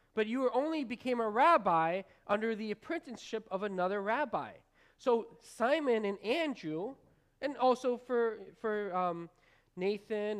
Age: 20-39